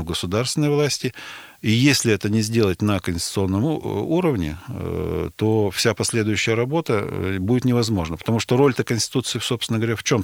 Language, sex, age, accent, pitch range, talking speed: Russian, male, 40-59, native, 95-125 Hz, 140 wpm